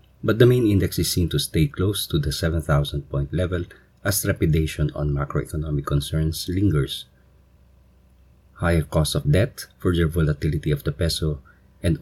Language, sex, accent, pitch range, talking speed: English, male, Filipino, 75-85 Hz, 150 wpm